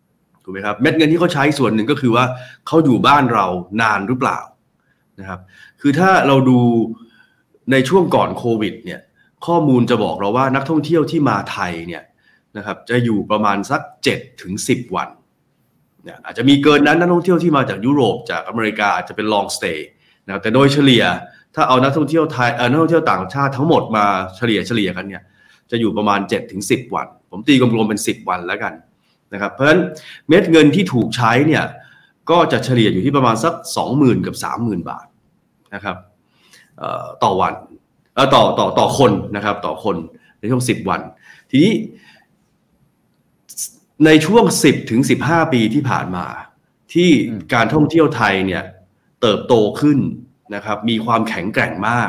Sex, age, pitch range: male, 30-49, 110-150 Hz